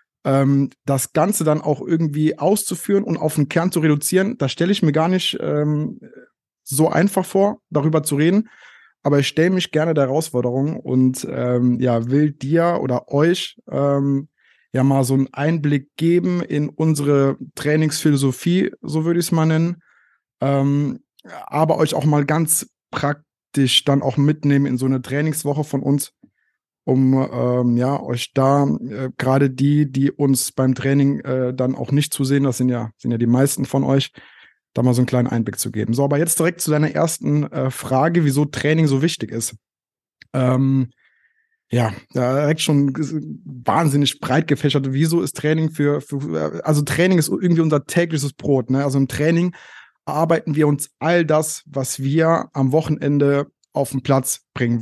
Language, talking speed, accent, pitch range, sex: German, 170 wpm, German, 135-160 Hz, male